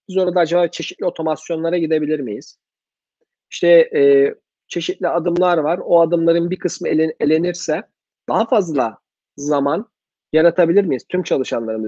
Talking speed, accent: 120 wpm, native